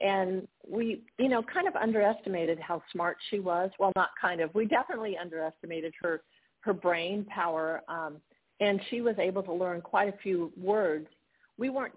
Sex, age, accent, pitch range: female, 50-69, American, 165-210 Hz